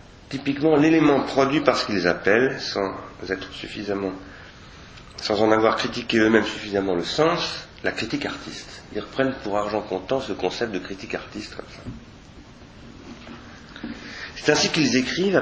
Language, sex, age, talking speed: French, male, 40-59, 130 wpm